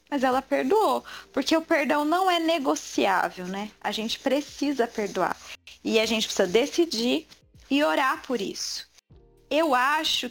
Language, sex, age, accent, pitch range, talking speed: Portuguese, female, 20-39, Brazilian, 230-300 Hz, 145 wpm